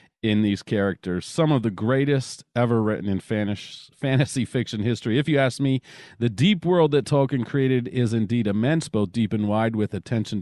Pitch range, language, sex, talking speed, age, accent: 110-140 Hz, English, male, 185 wpm, 40-59, American